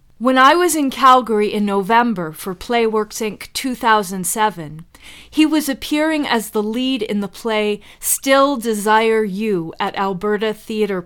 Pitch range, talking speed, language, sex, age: 190-240 Hz, 140 wpm, English, female, 40-59